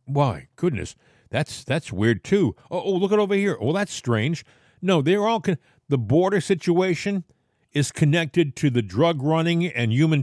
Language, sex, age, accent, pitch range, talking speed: English, male, 50-69, American, 135-180 Hz, 175 wpm